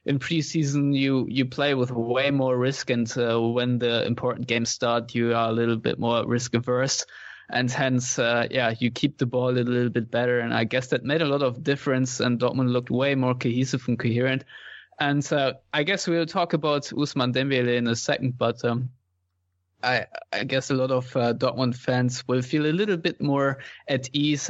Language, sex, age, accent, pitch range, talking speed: English, male, 20-39, German, 120-130 Hz, 205 wpm